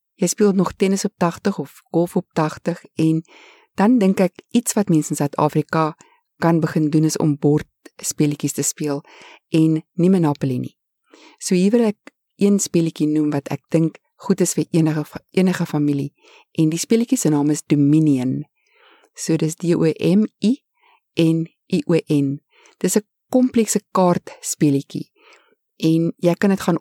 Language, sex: English, female